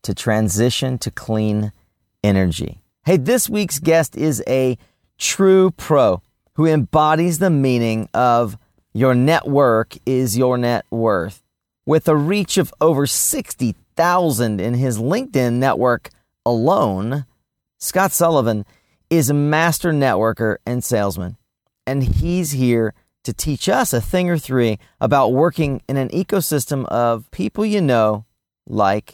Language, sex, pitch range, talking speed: English, male, 115-160 Hz, 130 wpm